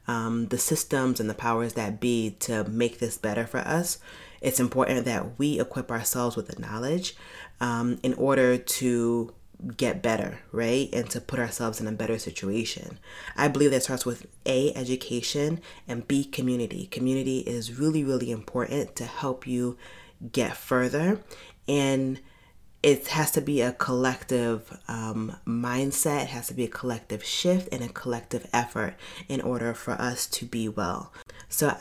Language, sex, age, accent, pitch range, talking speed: English, female, 30-49, American, 115-135 Hz, 160 wpm